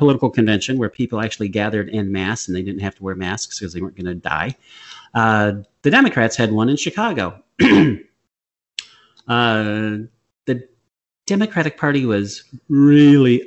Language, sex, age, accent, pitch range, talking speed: English, male, 40-59, American, 100-130 Hz, 150 wpm